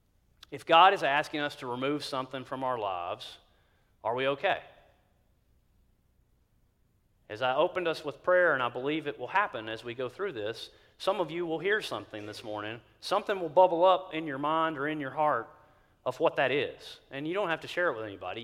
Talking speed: 205 wpm